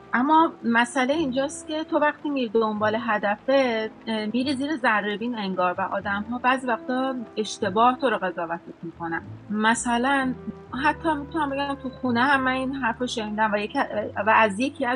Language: English